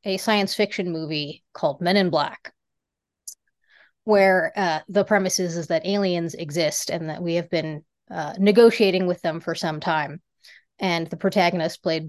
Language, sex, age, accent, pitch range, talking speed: English, female, 30-49, American, 165-205 Hz, 165 wpm